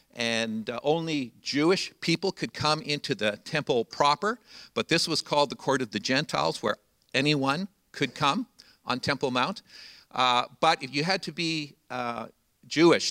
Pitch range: 115-155 Hz